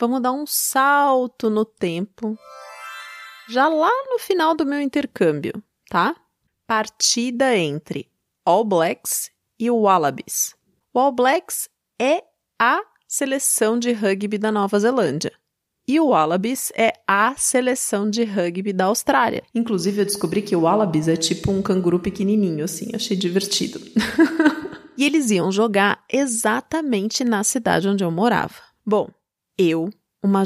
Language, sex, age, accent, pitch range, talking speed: Portuguese, female, 30-49, Brazilian, 195-255 Hz, 135 wpm